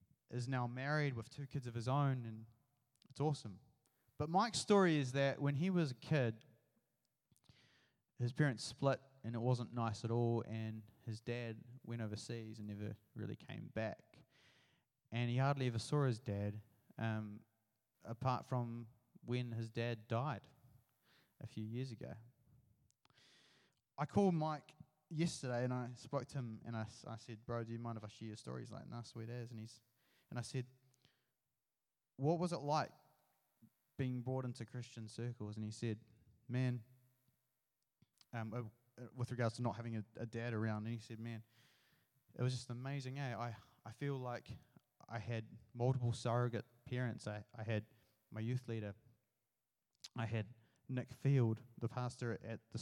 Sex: male